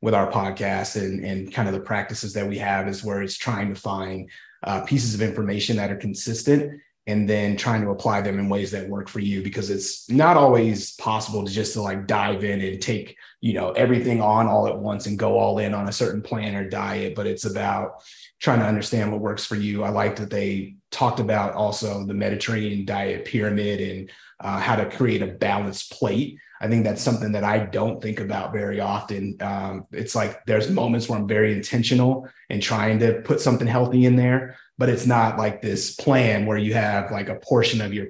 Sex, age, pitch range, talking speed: male, 30-49, 100-115 Hz, 220 wpm